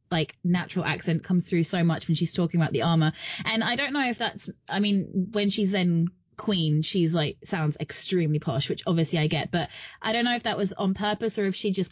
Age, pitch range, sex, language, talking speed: 20-39, 165-205 Hz, female, English, 235 wpm